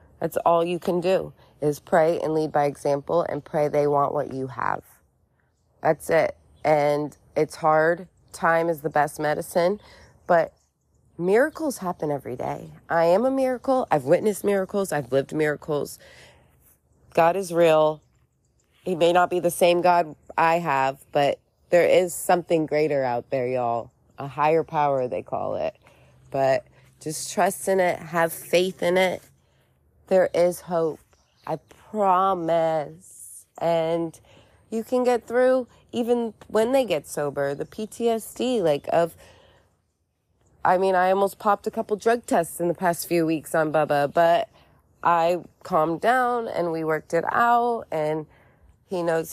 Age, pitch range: 30-49, 150-205 Hz